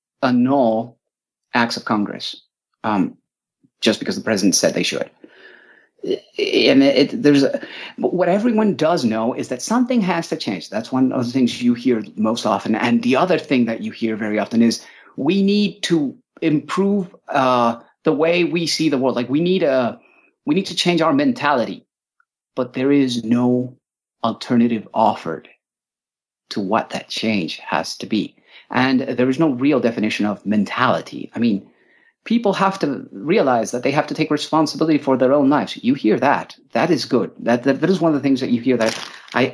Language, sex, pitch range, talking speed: English, male, 120-175 Hz, 180 wpm